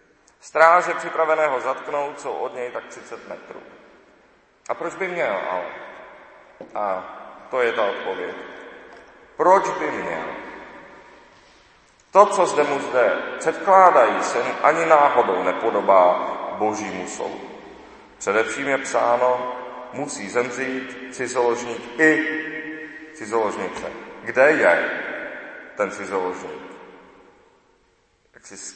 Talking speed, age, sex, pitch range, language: 95 wpm, 40-59, male, 125-175 Hz, Czech